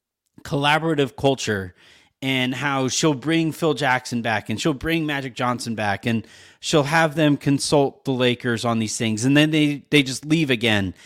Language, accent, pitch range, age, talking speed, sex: English, American, 115-145 Hz, 30-49, 175 wpm, male